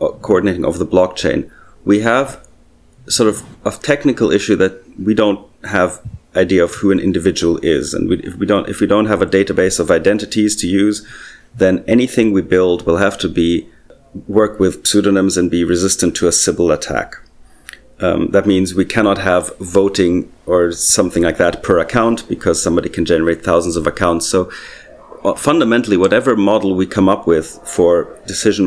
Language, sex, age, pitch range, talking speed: English, male, 40-59, 90-105 Hz, 175 wpm